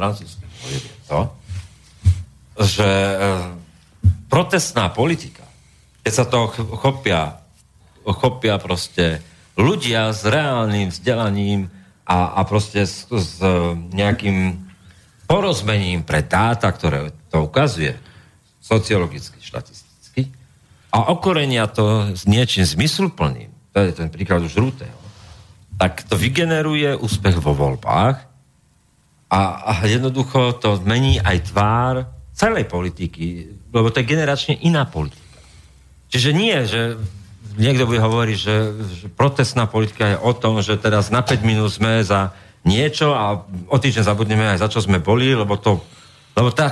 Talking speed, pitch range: 115 wpm, 95-125 Hz